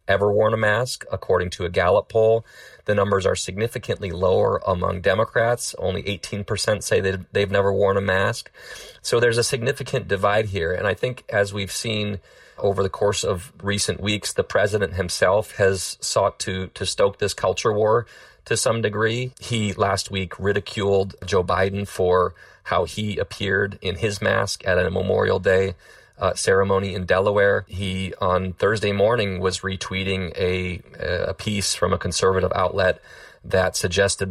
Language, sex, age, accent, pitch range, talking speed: English, male, 30-49, American, 90-105 Hz, 165 wpm